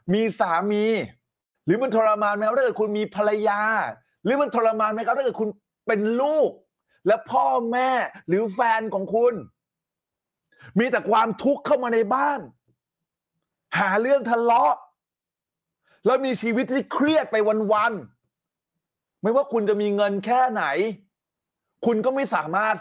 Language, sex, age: Thai, male, 30-49